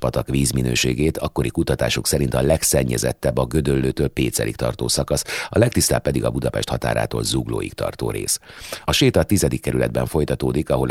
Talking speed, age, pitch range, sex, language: 150 wpm, 30-49, 65-75 Hz, male, Hungarian